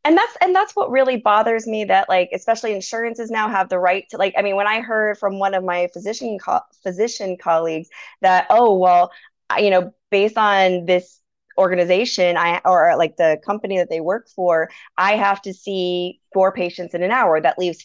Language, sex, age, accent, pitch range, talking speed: English, female, 20-39, American, 185-260 Hz, 205 wpm